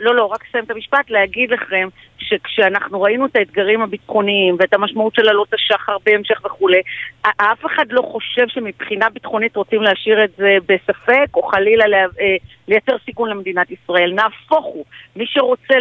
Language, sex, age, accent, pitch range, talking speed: Hebrew, female, 50-69, native, 195-260 Hz, 165 wpm